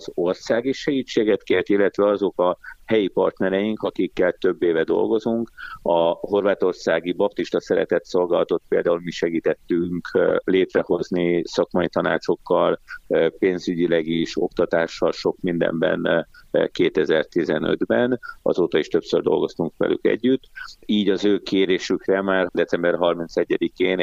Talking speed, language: 105 wpm, Hungarian